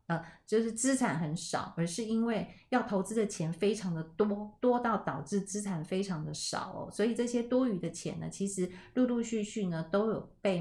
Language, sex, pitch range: Chinese, female, 165-210 Hz